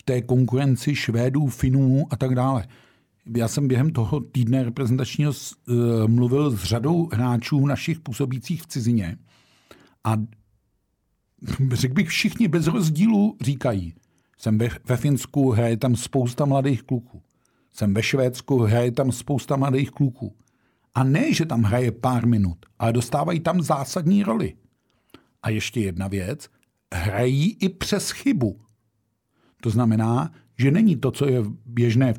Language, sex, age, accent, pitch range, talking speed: Czech, male, 50-69, native, 115-145 Hz, 140 wpm